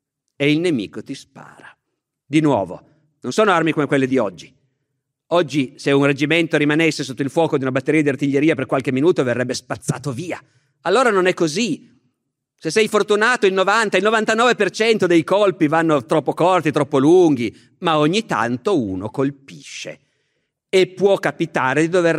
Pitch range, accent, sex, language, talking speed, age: 135-175 Hz, native, male, Italian, 165 wpm, 50-69